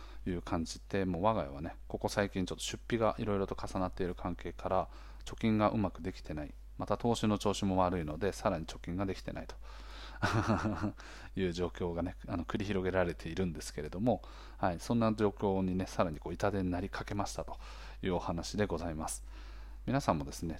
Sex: male